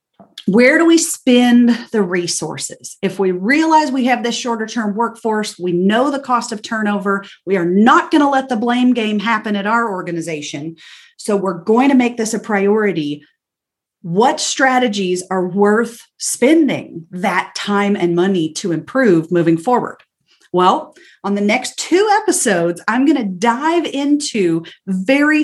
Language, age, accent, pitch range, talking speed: English, 40-59, American, 185-250 Hz, 150 wpm